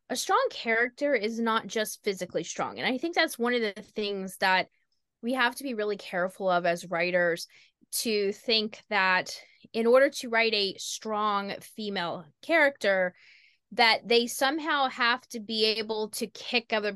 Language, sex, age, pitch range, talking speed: English, female, 20-39, 195-255 Hz, 165 wpm